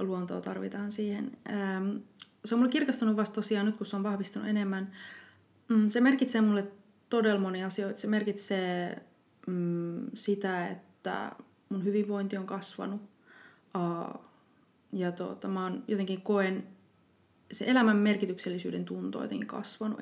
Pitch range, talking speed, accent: 180-215 Hz, 120 wpm, native